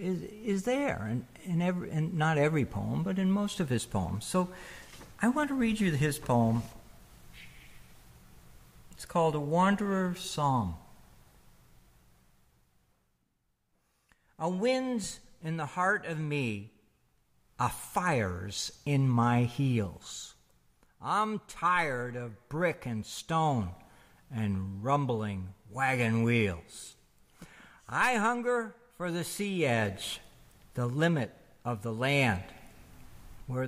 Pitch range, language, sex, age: 100-160 Hz, English, male, 60-79